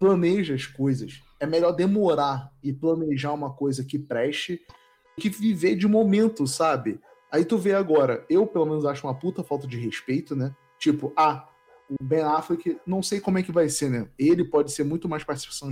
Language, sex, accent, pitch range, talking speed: Portuguese, male, Brazilian, 135-180 Hz, 195 wpm